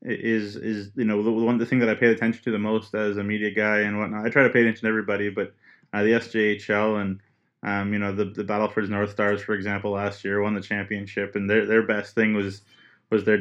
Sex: male